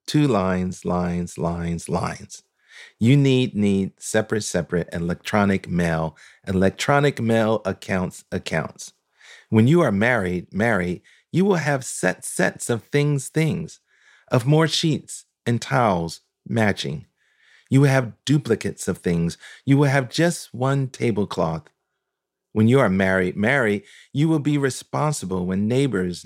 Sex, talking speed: male, 135 wpm